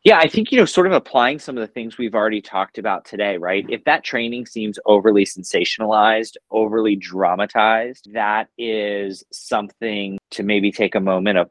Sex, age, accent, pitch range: male, 30-49, American, 95-115 Hz